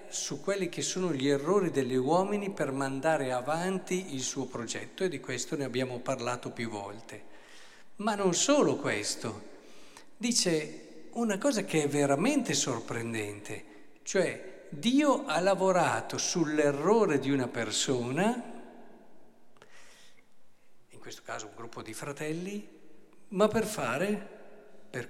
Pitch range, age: 130-195 Hz, 50-69